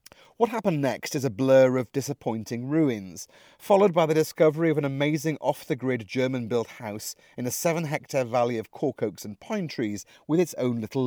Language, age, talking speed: English, 40-59, 180 wpm